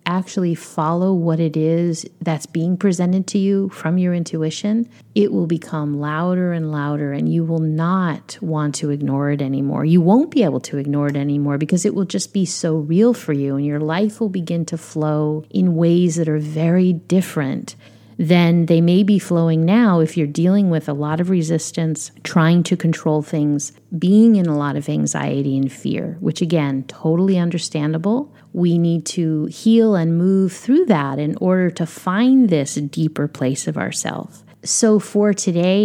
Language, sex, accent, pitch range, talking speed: English, female, American, 155-185 Hz, 180 wpm